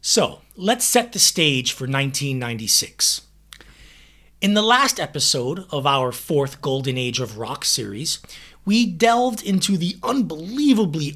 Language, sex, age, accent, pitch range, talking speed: English, male, 30-49, American, 135-180 Hz, 130 wpm